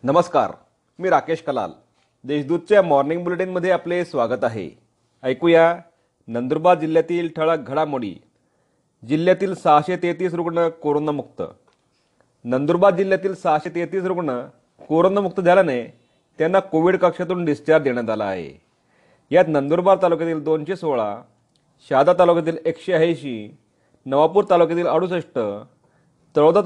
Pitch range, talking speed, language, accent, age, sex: 150-180 Hz, 100 wpm, Marathi, native, 30-49, male